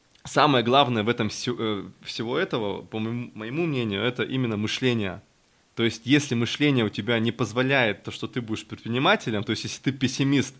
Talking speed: 175 wpm